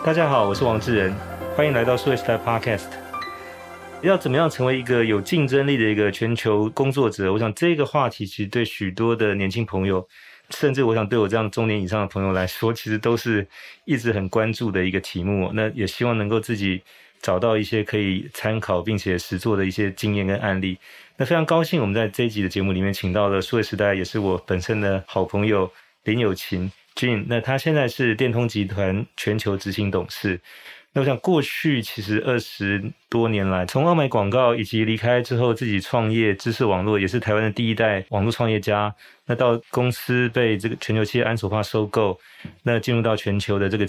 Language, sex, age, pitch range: Chinese, male, 30-49, 100-120 Hz